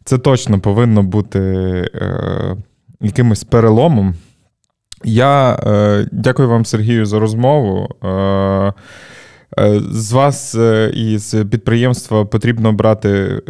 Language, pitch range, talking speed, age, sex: Ukrainian, 100-120 Hz, 105 wpm, 20-39, male